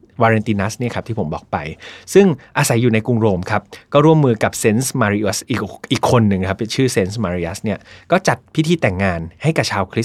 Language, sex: Thai, male